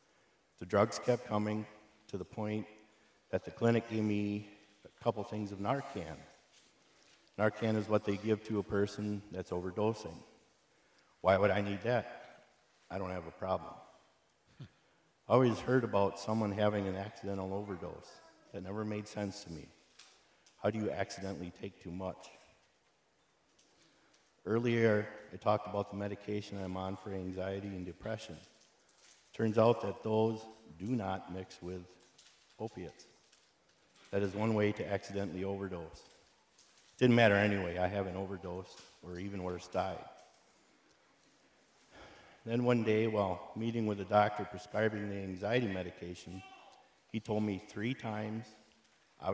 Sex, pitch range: male, 95-110 Hz